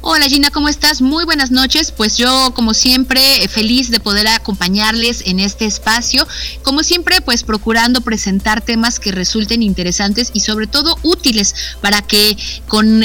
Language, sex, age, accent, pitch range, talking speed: Spanish, female, 30-49, Mexican, 195-250 Hz, 160 wpm